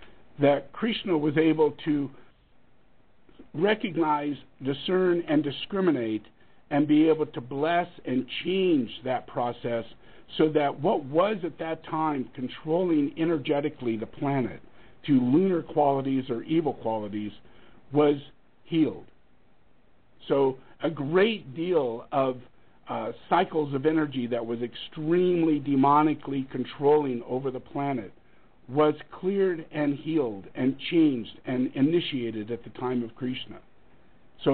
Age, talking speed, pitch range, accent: 50-69, 120 wpm, 125-160 Hz, American